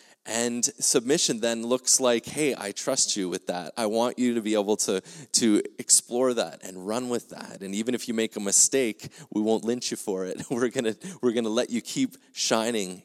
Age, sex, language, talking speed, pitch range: 20-39, male, English, 215 wpm, 95-115 Hz